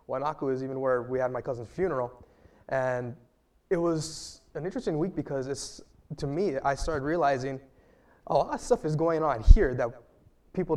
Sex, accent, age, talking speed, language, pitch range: male, American, 20-39, 180 wpm, English, 125-150 Hz